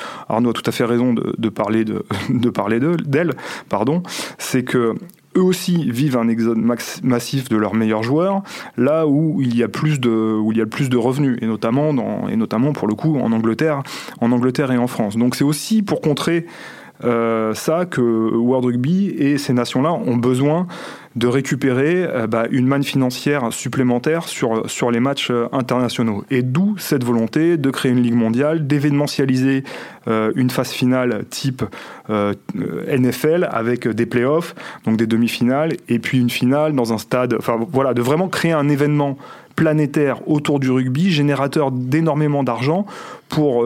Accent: French